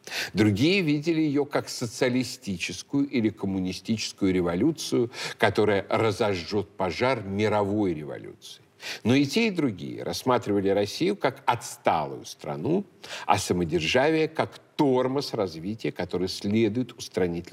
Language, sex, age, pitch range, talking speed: Russian, male, 50-69, 95-135 Hz, 105 wpm